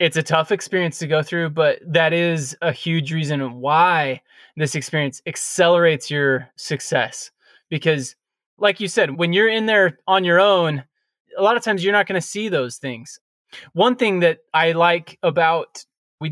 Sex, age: male, 20-39